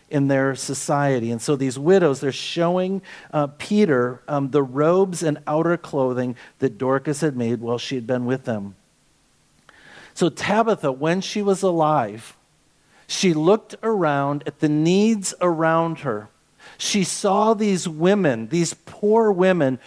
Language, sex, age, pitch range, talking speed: English, male, 50-69, 140-180 Hz, 145 wpm